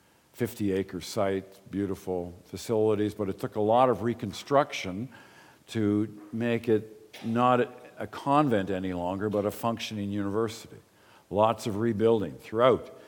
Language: English